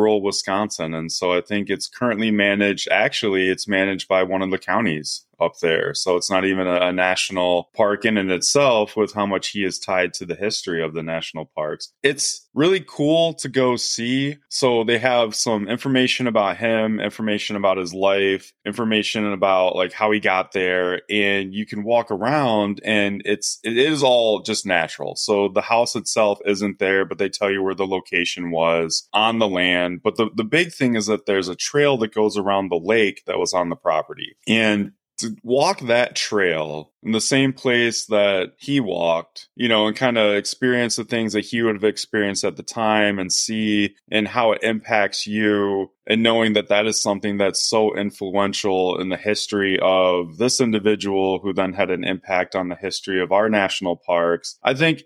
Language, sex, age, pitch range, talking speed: English, male, 20-39, 95-115 Hz, 195 wpm